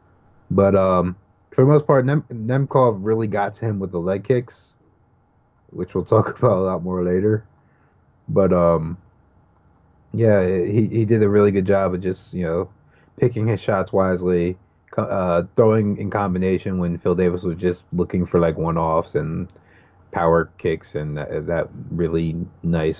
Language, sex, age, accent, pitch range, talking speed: English, male, 30-49, American, 90-110 Hz, 160 wpm